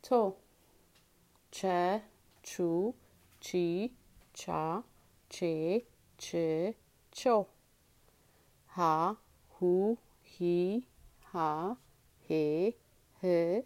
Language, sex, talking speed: Amharic, female, 60 wpm